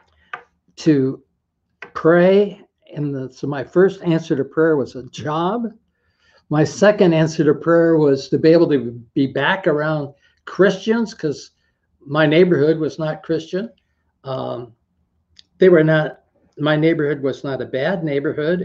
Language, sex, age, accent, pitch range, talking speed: English, male, 60-79, American, 130-170 Hz, 140 wpm